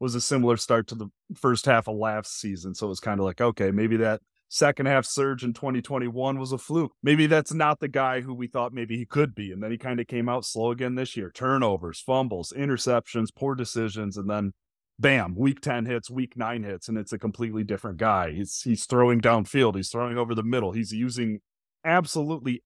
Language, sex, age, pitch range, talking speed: English, male, 30-49, 105-135 Hz, 215 wpm